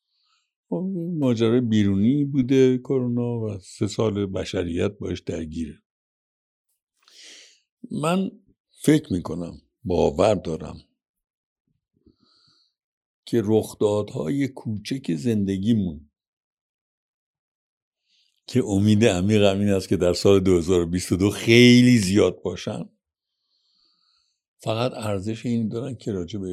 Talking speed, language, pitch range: 90 wpm, Persian, 95-130 Hz